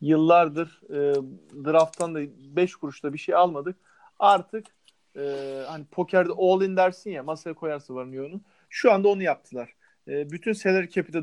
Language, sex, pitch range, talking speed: Turkish, male, 165-215 Hz, 160 wpm